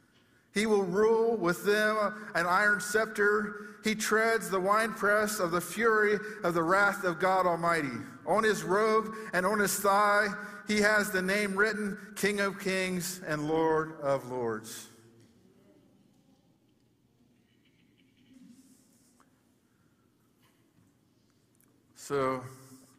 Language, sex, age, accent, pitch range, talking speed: English, male, 50-69, American, 130-195 Hz, 105 wpm